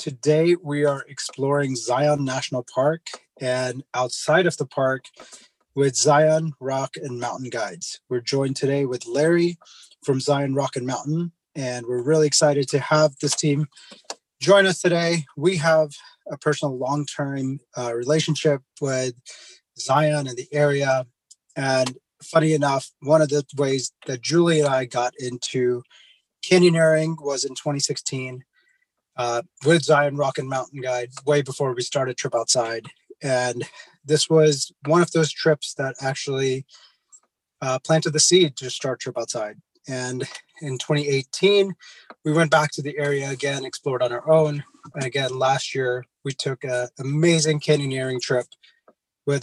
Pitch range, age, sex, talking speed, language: 130-155 Hz, 30-49, male, 150 wpm, English